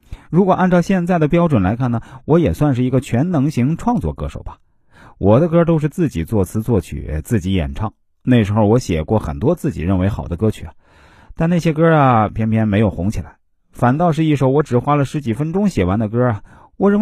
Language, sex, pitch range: Chinese, male, 95-155 Hz